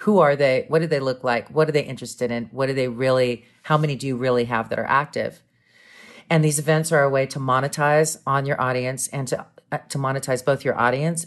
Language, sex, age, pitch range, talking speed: English, female, 40-59, 125-155 Hz, 235 wpm